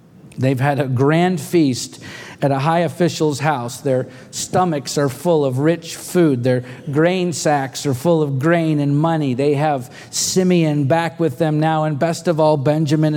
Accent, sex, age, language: American, male, 50-69, English